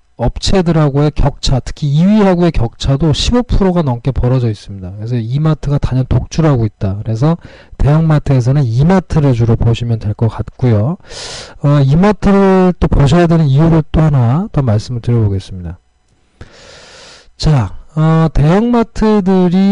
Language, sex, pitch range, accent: Korean, male, 120-165 Hz, native